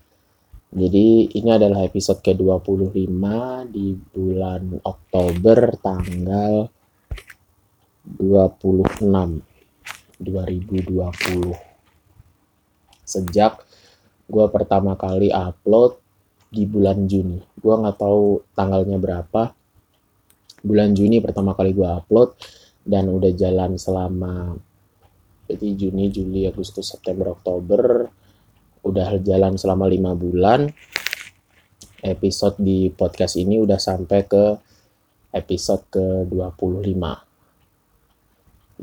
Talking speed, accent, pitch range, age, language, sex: 85 wpm, native, 95-105 Hz, 20-39, Indonesian, male